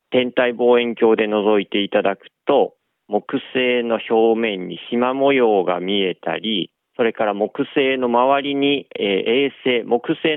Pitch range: 105-145 Hz